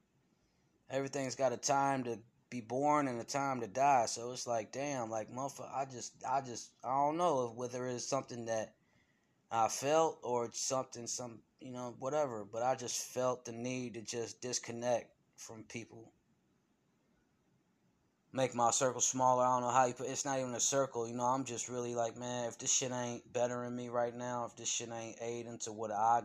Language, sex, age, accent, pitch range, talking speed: English, male, 20-39, American, 110-125 Hz, 200 wpm